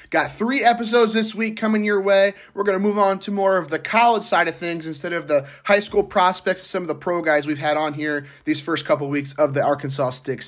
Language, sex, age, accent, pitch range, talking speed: English, male, 30-49, American, 150-190 Hz, 260 wpm